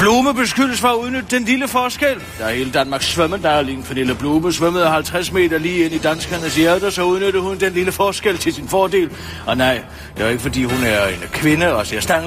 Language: Danish